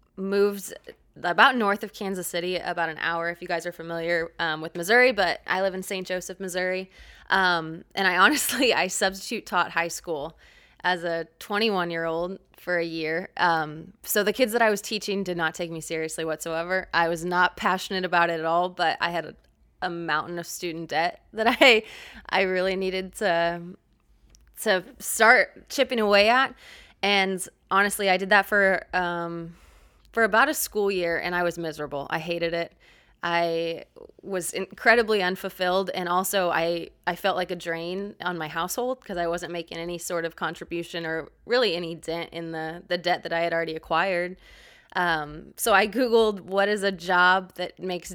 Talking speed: 185 wpm